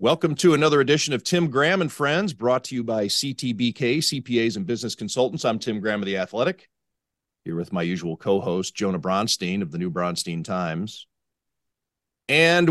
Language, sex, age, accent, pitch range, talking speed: English, male, 40-59, American, 105-145 Hz, 175 wpm